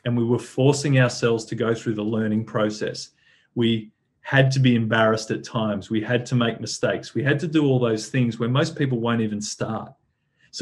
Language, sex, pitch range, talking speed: English, male, 115-135 Hz, 210 wpm